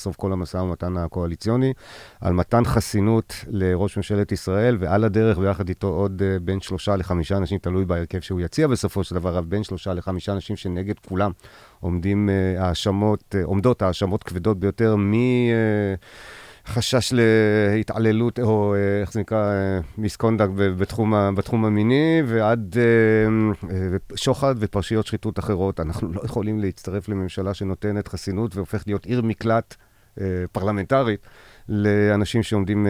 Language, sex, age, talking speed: Hebrew, male, 40-59, 125 wpm